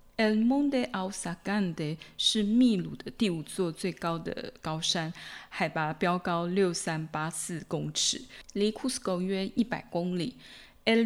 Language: Chinese